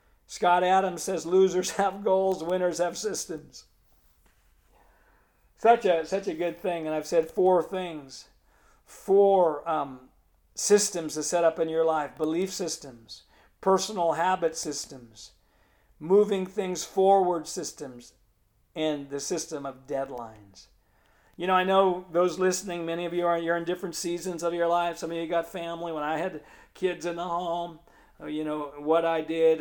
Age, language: 50-69, English